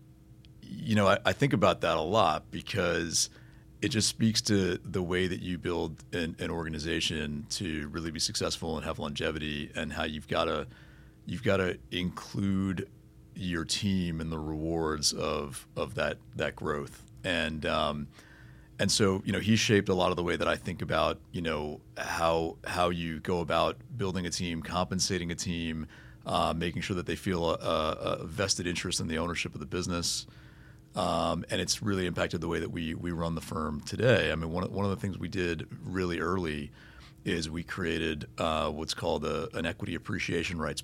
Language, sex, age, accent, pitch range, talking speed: English, male, 40-59, American, 80-95 Hz, 190 wpm